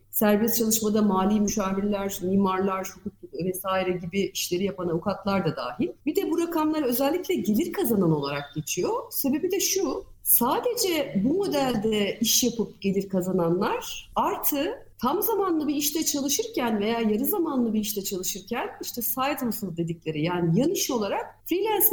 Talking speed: 140 wpm